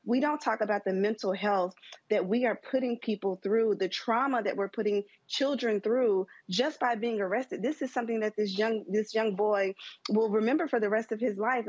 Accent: American